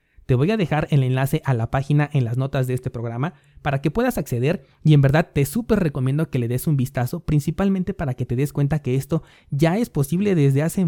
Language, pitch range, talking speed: Spanish, 125-155 Hz, 235 wpm